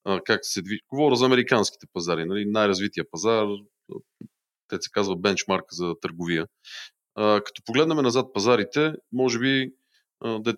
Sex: male